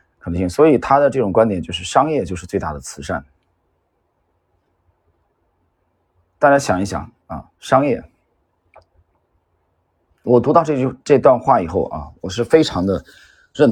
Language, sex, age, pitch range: Chinese, male, 30-49, 85-115 Hz